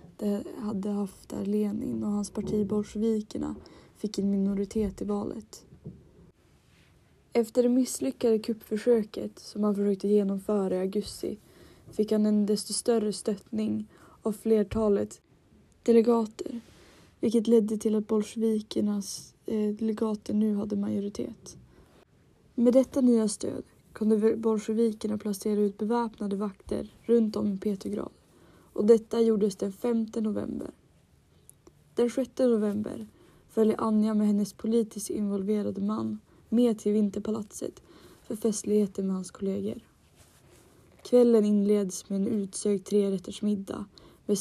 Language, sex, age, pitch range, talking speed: Swedish, female, 20-39, 205-225 Hz, 120 wpm